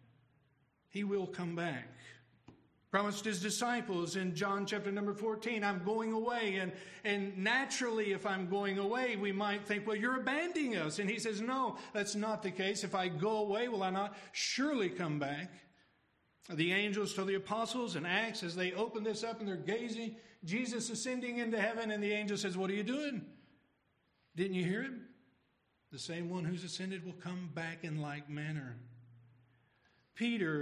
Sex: male